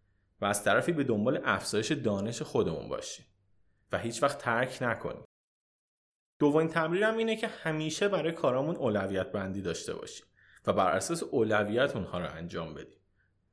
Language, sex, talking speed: Persian, male, 145 wpm